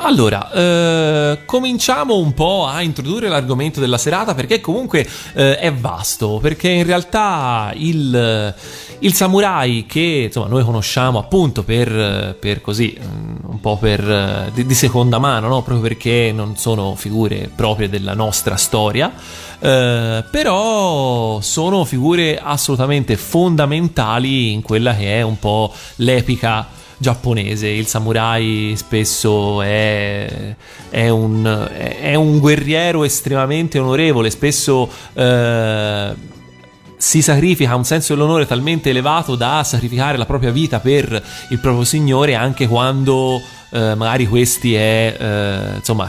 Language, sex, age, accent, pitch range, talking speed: Italian, male, 30-49, native, 110-140 Hz, 125 wpm